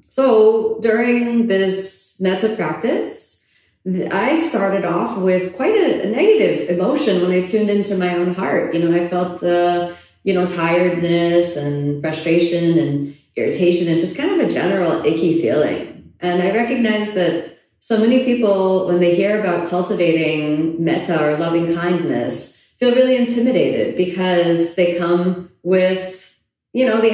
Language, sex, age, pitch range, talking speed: English, female, 30-49, 165-195 Hz, 150 wpm